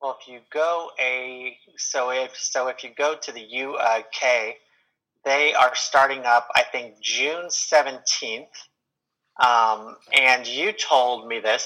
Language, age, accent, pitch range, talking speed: English, 30-49, American, 115-140 Hz, 150 wpm